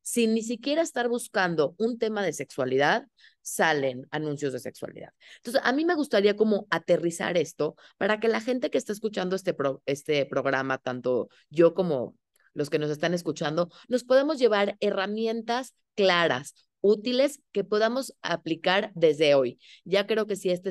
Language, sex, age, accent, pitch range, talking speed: Spanish, female, 30-49, Mexican, 155-210 Hz, 160 wpm